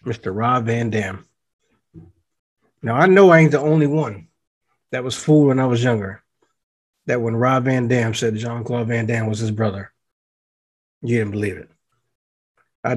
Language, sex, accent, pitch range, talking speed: English, male, American, 110-125 Hz, 165 wpm